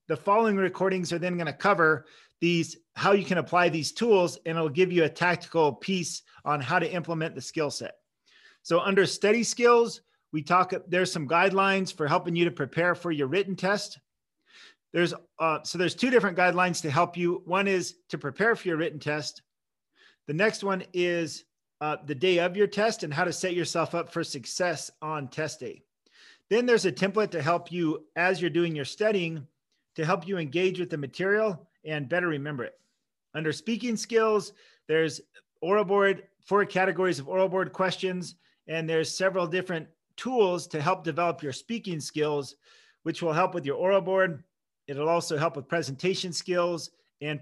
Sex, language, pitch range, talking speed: male, English, 160-190 Hz, 185 wpm